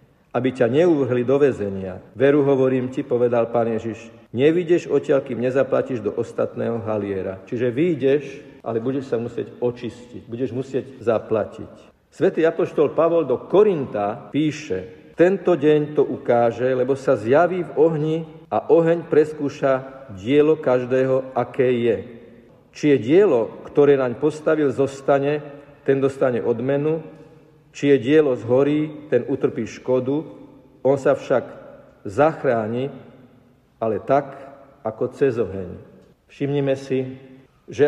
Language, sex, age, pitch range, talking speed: Slovak, male, 50-69, 125-150 Hz, 125 wpm